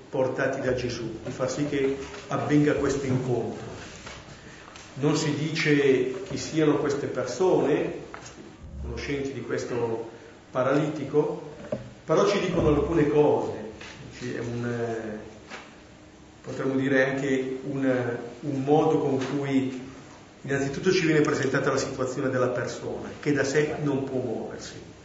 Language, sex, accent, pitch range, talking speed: Italian, male, native, 130-150 Hz, 120 wpm